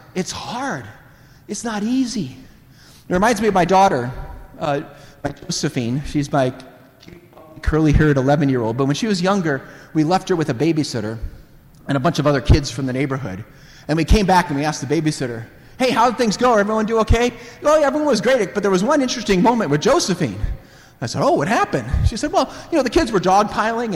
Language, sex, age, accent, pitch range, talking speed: English, male, 30-49, American, 145-245 Hz, 215 wpm